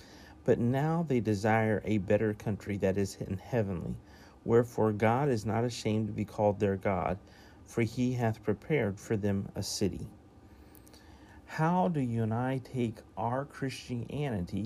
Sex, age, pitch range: male, 50-69, 100-130 Hz